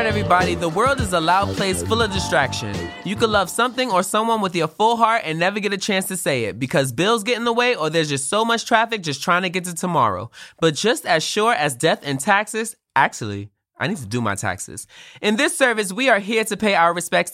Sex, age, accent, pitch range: male, 20-39, American, 140-215 Hz